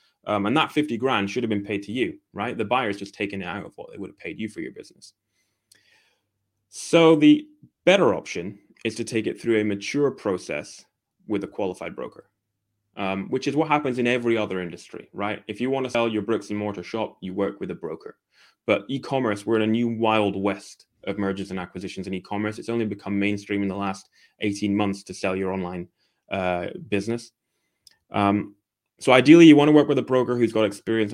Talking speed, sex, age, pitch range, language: 210 wpm, male, 20-39, 100-115 Hz, English